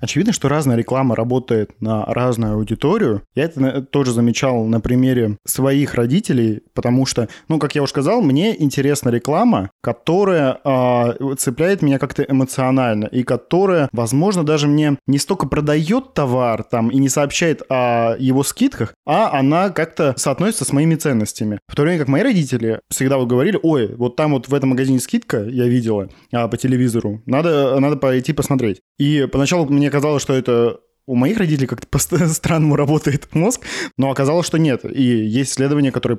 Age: 20-39